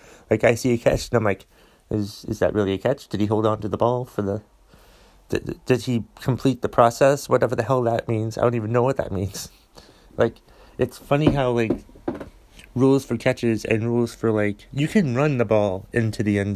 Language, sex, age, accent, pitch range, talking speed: English, male, 30-49, American, 95-115 Hz, 220 wpm